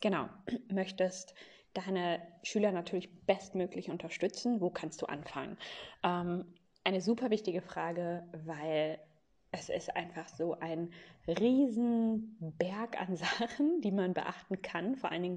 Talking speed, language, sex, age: 130 wpm, German, female, 20-39